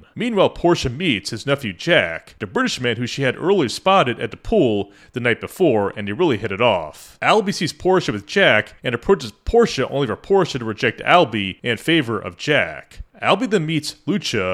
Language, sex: English, male